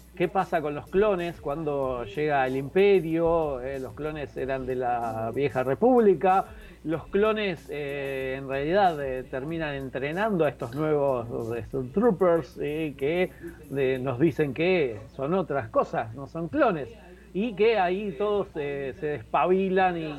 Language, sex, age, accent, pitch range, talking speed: English, male, 40-59, Argentinian, 135-185 Hz, 145 wpm